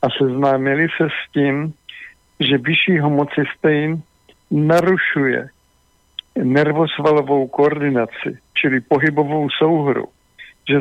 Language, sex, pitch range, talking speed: Slovak, male, 135-155 Hz, 85 wpm